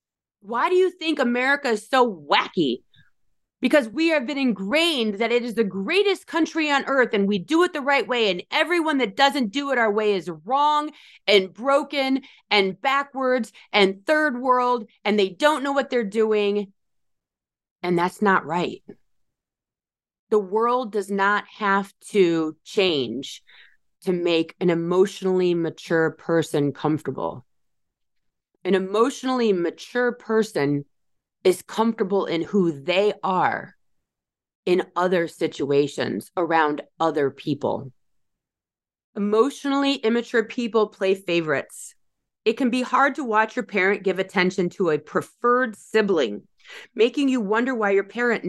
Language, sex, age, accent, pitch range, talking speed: English, female, 30-49, American, 185-255 Hz, 135 wpm